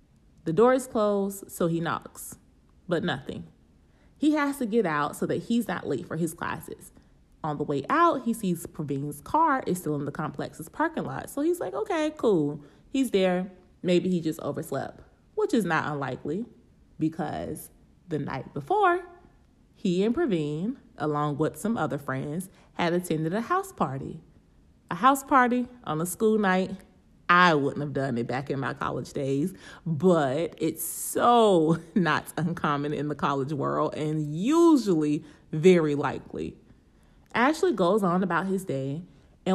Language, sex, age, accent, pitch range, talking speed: English, female, 30-49, American, 155-245 Hz, 160 wpm